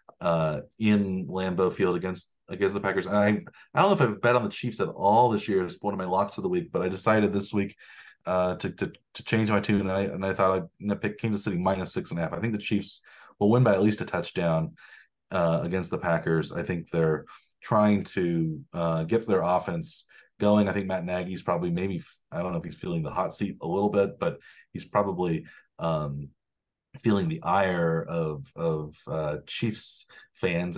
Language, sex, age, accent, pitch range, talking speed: English, male, 30-49, American, 85-115 Hz, 220 wpm